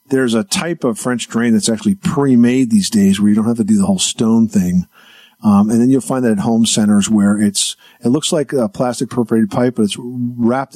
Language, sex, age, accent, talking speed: English, male, 50-69, American, 235 wpm